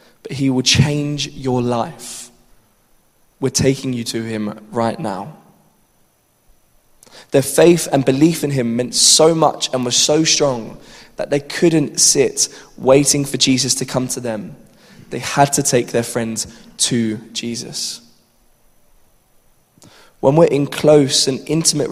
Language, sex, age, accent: English, male, 20-39, British